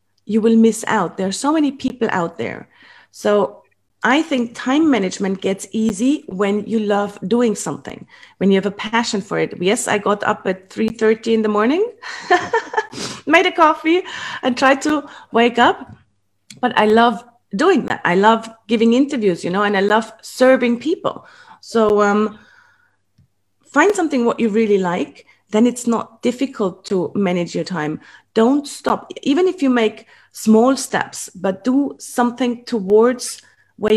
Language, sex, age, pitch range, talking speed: English, female, 30-49, 205-260 Hz, 165 wpm